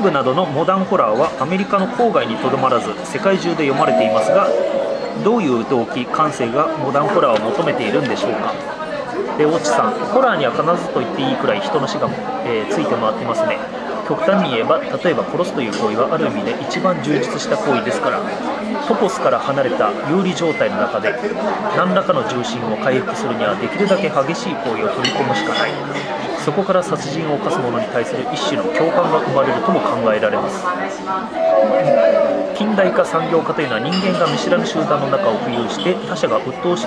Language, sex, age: Japanese, male, 30-49